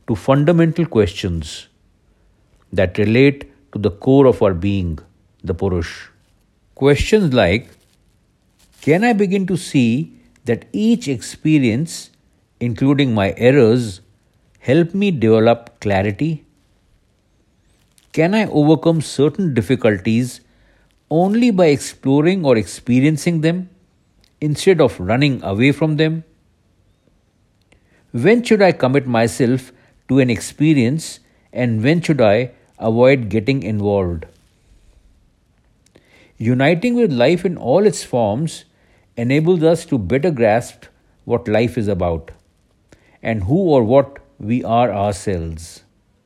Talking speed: 110 wpm